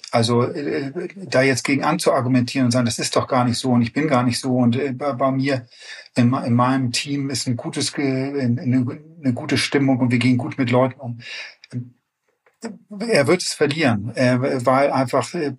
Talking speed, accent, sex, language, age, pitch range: 160 wpm, German, male, German, 40-59, 120-140 Hz